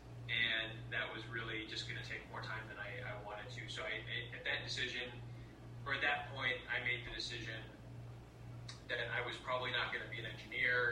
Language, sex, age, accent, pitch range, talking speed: English, male, 20-39, American, 115-125 Hz, 190 wpm